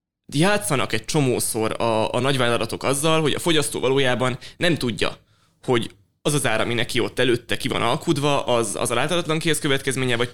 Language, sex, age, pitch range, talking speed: Hungarian, male, 20-39, 110-135 Hz, 170 wpm